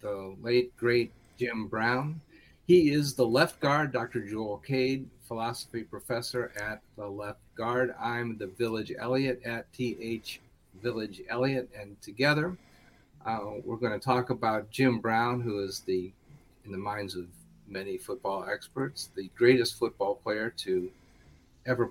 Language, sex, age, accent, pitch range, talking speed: English, male, 50-69, American, 105-125 Hz, 140 wpm